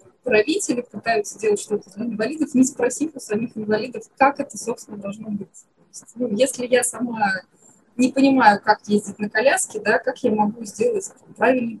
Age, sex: 20-39, female